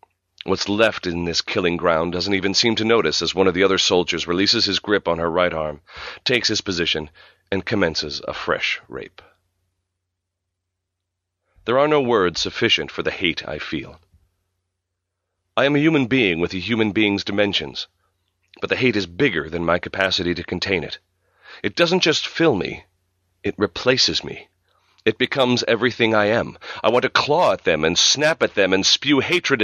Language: English